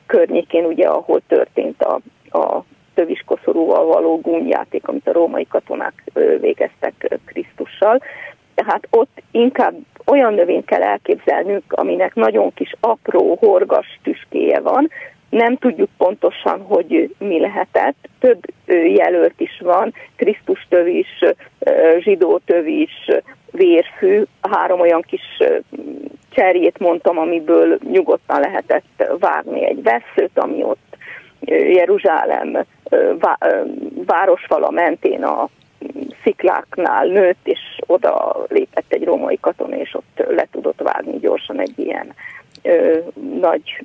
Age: 30-49